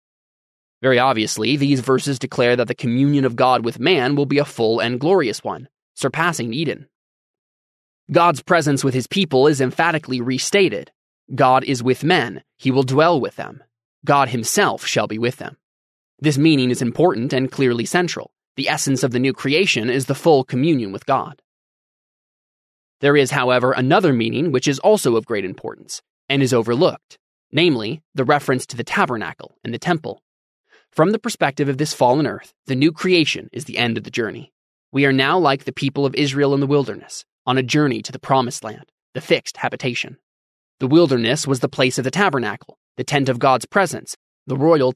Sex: male